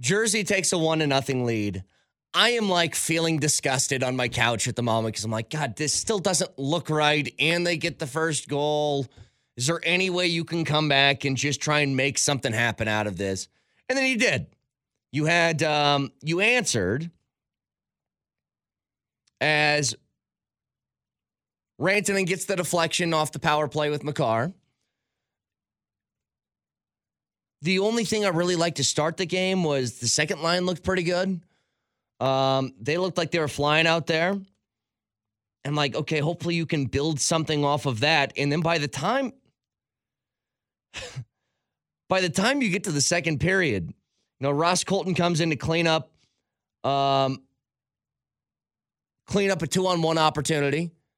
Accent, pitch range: American, 135-175 Hz